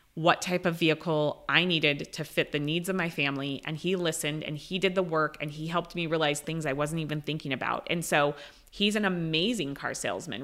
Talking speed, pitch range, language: 225 wpm, 155-190 Hz, English